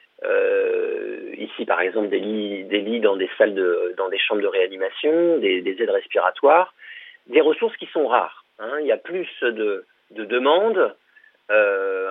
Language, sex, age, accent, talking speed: French, male, 40-59, French, 175 wpm